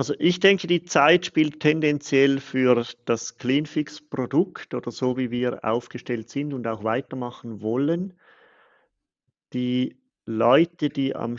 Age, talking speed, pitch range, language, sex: 50-69, 125 wpm, 115-150 Hz, German, male